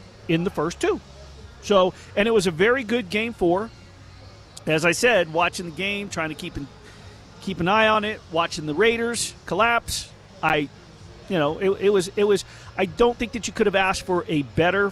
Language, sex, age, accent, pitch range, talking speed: English, male, 40-59, American, 170-225 Hz, 205 wpm